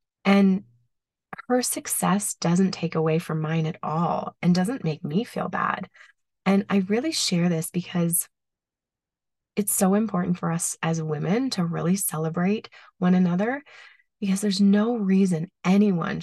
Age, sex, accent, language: 20-39, female, American, English